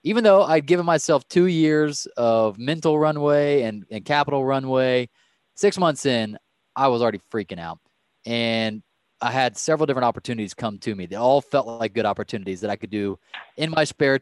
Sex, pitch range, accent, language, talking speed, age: male, 115-155 Hz, American, English, 185 wpm, 20-39